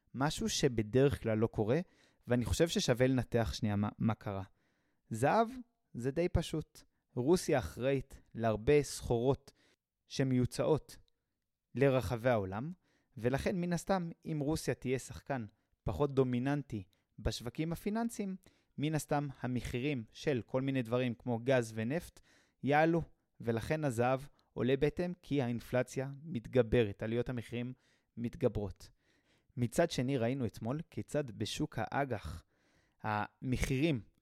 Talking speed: 110 wpm